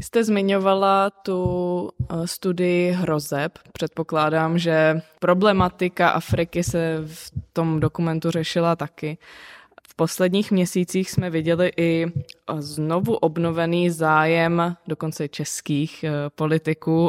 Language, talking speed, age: Czech, 95 wpm, 20-39